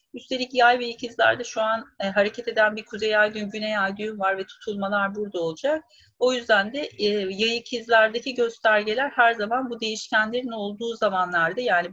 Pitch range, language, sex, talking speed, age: 205-255 Hz, Turkish, female, 165 wpm, 40-59